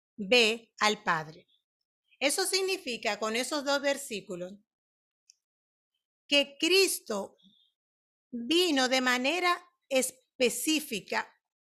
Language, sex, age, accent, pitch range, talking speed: Spanish, female, 40-59, American, 230-280 Hz, 75 wpm